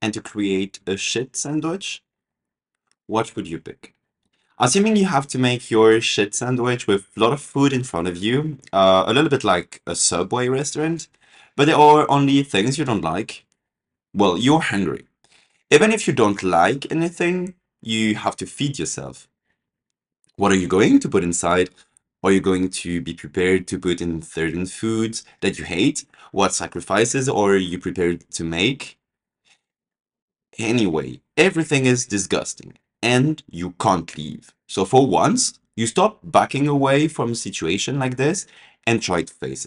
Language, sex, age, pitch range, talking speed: English, male, 20-39, 95-145 Hz, 165 wpm